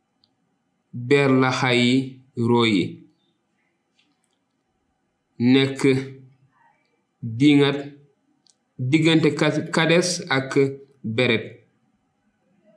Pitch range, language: 115-135 Hz, Dutch